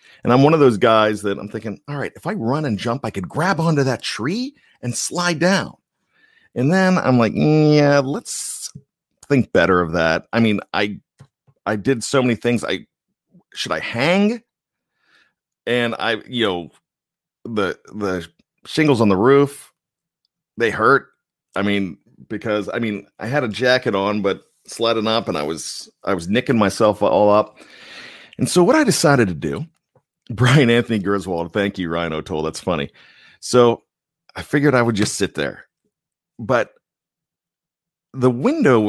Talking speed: 165 wpm